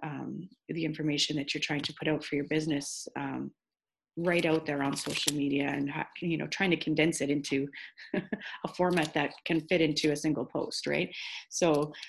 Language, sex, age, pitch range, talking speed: English, female, 30-49, 155-190 Hz, 190 wpm